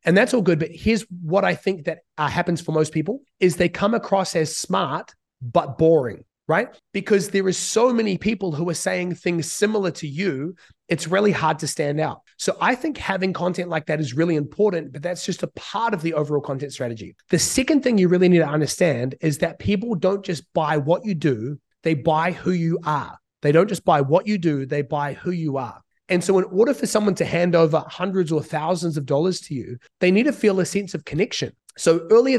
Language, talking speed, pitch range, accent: English, 230 wpm, 150-185 Hz, Australian